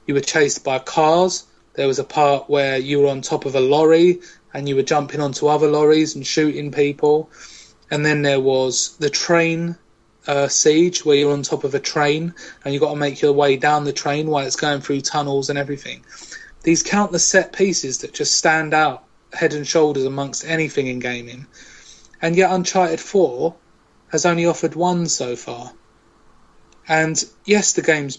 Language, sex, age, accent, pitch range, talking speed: English, male, 30-49, British, 145-175 Hz, 185 wpm